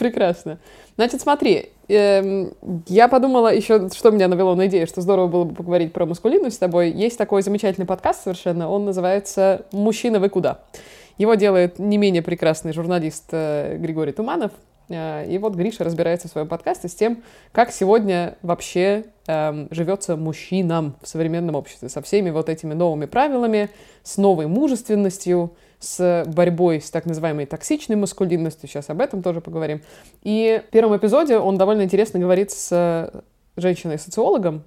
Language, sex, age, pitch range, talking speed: Russian, female, 20-39, 165-205 Hz, 155 wpm